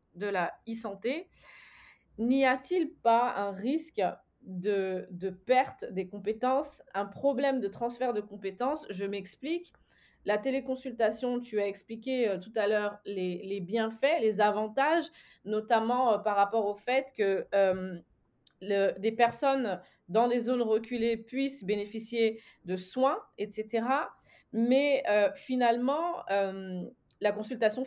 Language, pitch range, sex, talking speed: French, 200-255 Hz, female, 130 wpm